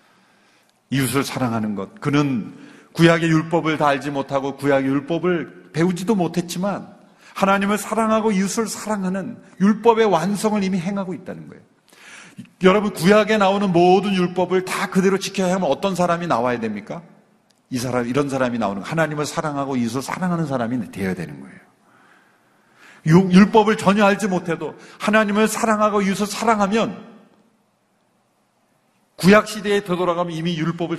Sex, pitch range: male, 140-200 Hz